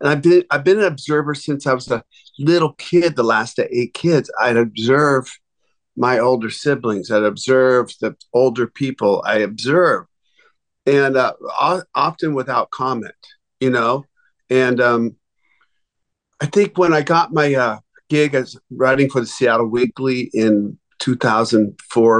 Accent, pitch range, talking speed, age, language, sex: American, 120-155 Hz, 150 wpm, 50-69, English, male